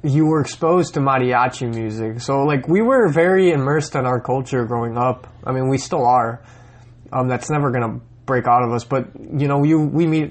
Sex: male